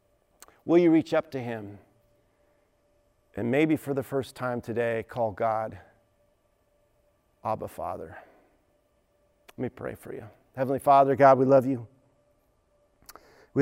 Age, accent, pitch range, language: 40-59, American, 125-155 Hz, English